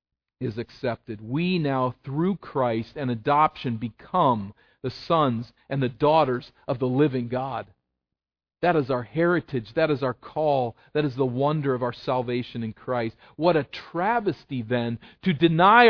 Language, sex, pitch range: English, male, 105-165 Hz